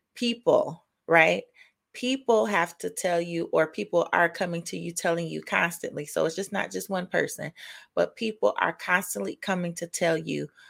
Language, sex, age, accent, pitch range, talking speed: English, female, 30-49, American, 170-210 Hz, 175 wpm